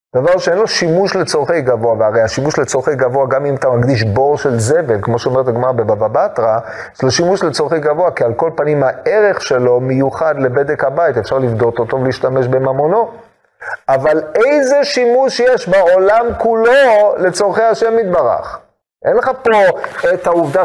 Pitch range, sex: 135-225 Hz, male